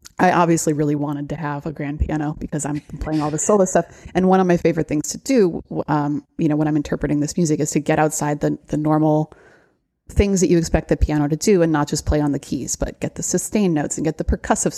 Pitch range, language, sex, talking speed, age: 150-165 Hz, English, female, 255 wpm, 30-49